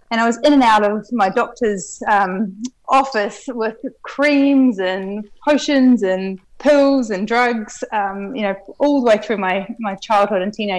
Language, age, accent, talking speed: English, 20-39, Australian, 170 wpm